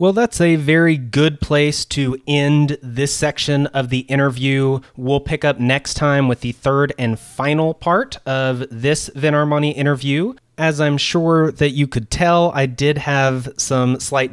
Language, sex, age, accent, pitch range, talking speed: English, male, 30-49, American, 115-140 Hz, 170 wpm